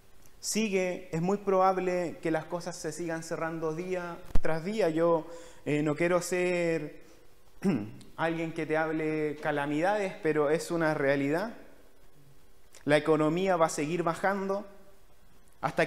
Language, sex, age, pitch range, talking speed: Spanish, male, 30-49, 165-220 Hz, 130 wpm